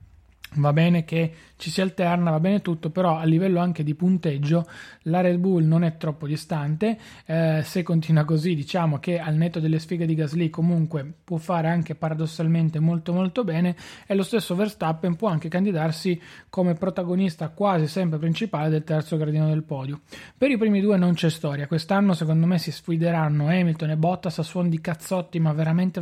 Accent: native